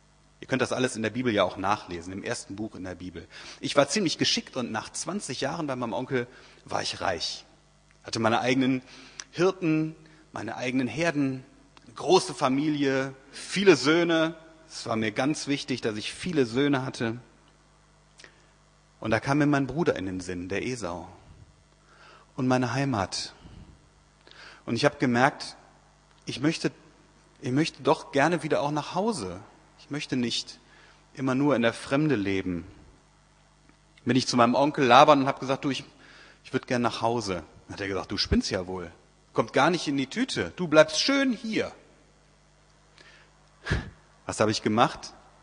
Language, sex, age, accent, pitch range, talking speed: German, male, 30-49, German, 115-155 Hz, 165 wpm